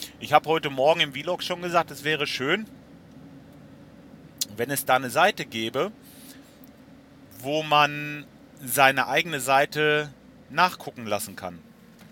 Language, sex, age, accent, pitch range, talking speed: German, male, 40-59, German, 125-185 Hz, 125 wpm